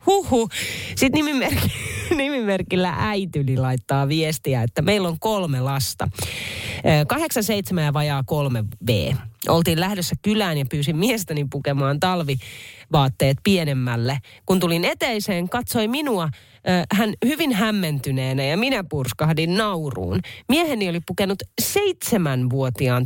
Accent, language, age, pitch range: native, Finnish, 30-49, 130-190 Hz